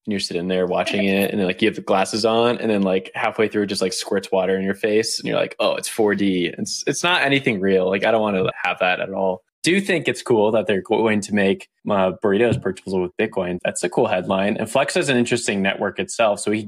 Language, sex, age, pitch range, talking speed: English, male, 20-39, 95-115 Hz, 265 wpm